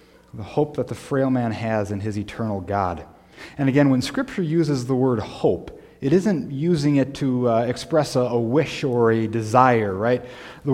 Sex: male